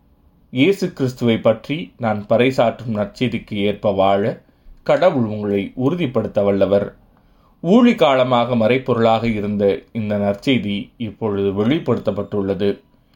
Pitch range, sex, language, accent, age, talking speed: 100-125 Hz, male, Tamil, native, 30-49, 90 wpm